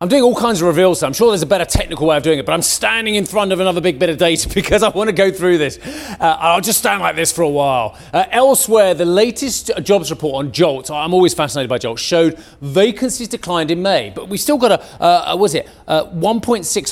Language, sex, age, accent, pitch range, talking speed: English, male, 30-49, British, 155-220 Hz, 255 wpm